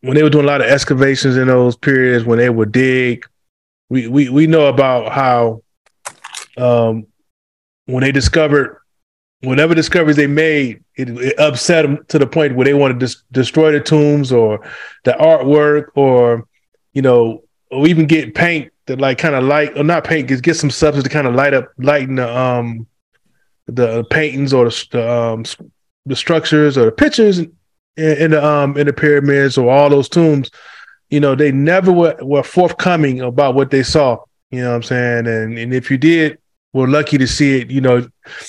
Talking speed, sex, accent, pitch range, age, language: 190 wpm, male, American, 120-150 Hz, 20-39, English